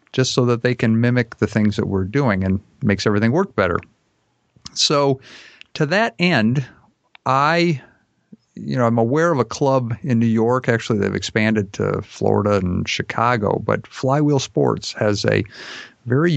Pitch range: 105-130 Hz